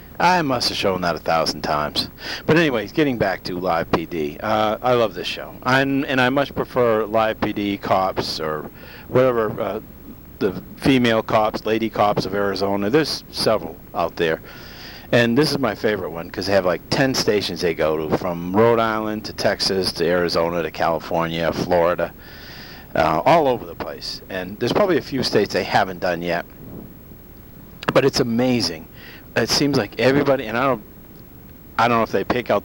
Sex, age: male, 50-69